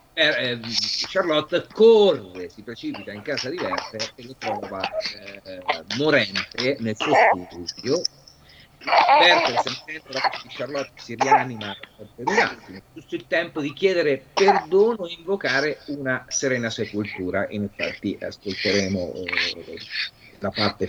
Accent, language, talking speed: native, Italian, 110 wpm